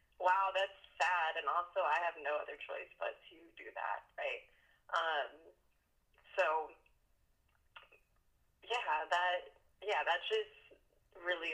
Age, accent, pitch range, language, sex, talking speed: 20-39, American, 155-200 Hz, English, female, 120 wpm